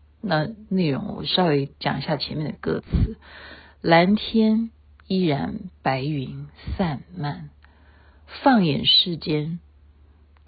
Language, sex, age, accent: Chinese, female, 50-69, native